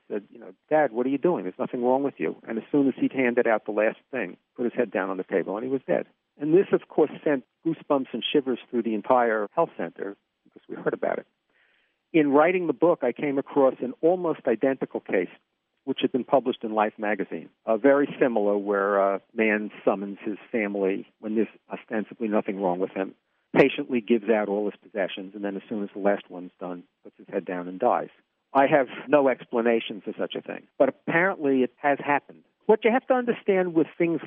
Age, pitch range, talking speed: 50-69, 105-145 Hz, 220 wpm